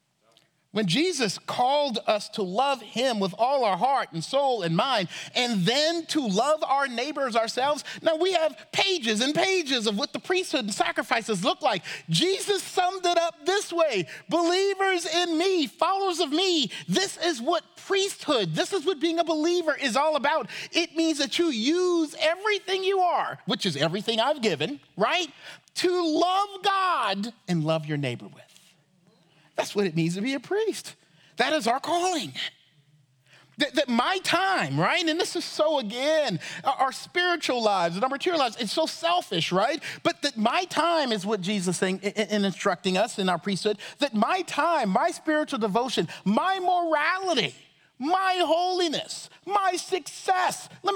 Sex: male